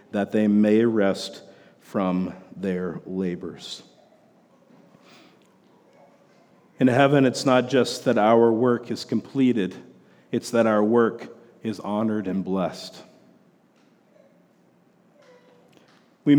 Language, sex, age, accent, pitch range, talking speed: English, male, 50-69, American, 115-140 Hz, 95 wpm